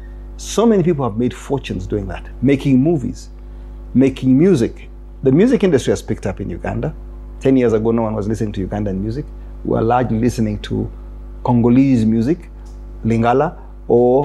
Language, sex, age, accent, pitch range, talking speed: English, male, 40-59, South African, 115-145 Hz, 165 wpm